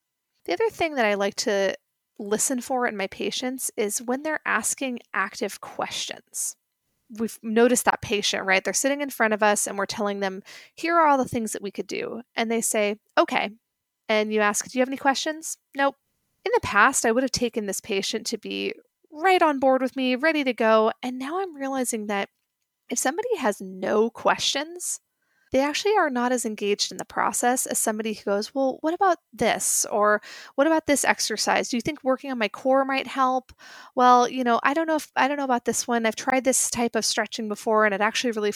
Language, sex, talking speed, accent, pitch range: English, female, 215 wpm, American, 215-275 Hz